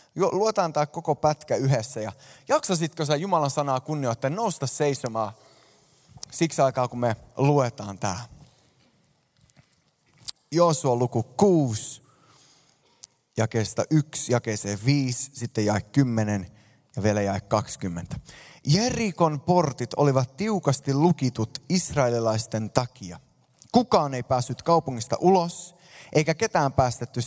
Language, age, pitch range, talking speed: Finnish, 20-39, 120-155 Hz, 110 wpm